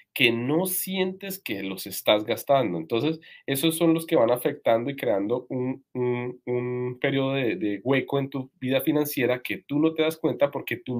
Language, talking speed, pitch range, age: Spanish, 185 wpm, 120-160 Hz, 30-49